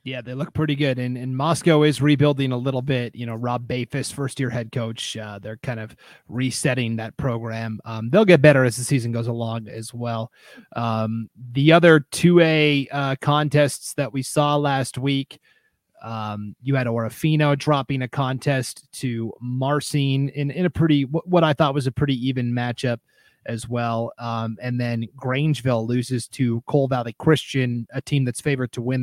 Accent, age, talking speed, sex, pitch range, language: American, 30-49, 180 wpm, male, 120-150 Hz, English